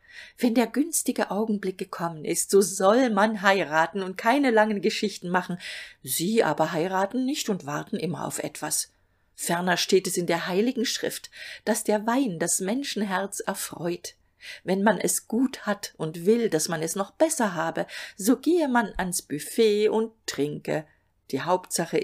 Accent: German